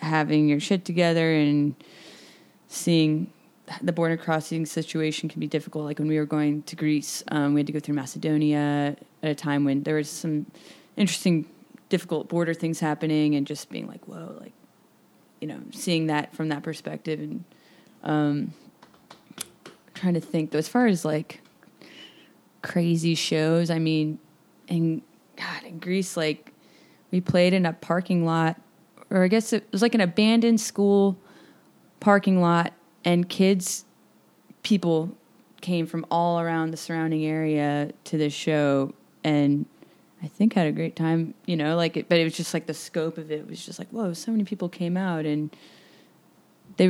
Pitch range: 155-185 Hz